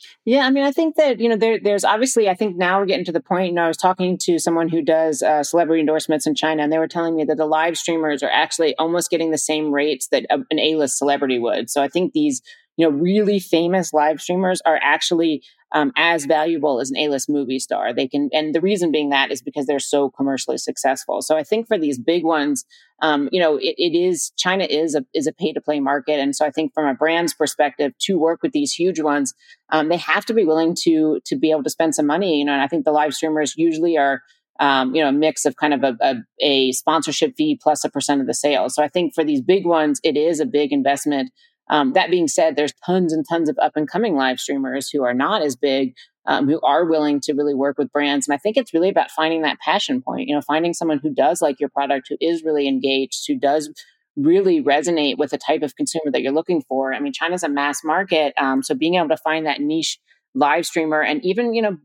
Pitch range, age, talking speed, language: 145-175 Hz, 30-49, 255 wpm, English